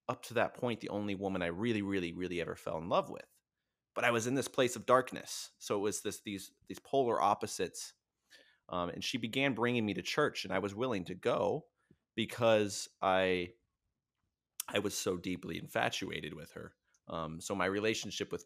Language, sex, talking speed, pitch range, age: English, male, 195 wpm, 90-120 Hz, 30-49